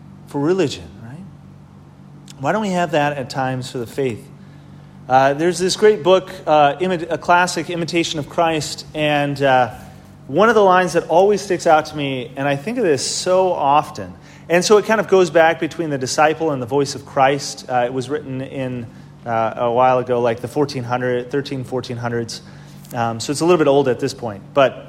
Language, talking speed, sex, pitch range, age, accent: English, 205 wpm, male, 135-185 Hz, 30-49, American